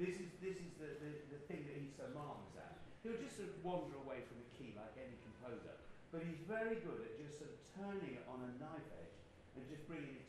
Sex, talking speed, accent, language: male, 250 wpm, British, English